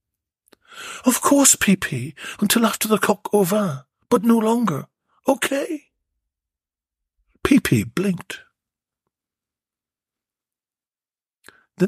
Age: 60-79